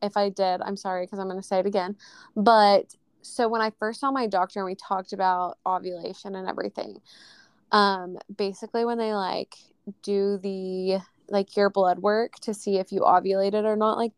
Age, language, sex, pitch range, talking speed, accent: 20-39, English, female, 190-220 Hz, 195 wpm, American